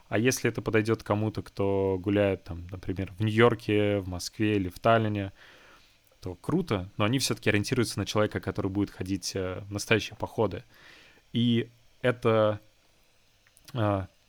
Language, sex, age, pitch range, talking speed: Russian, male, 20-39, 100-115 Hz, 140 wpm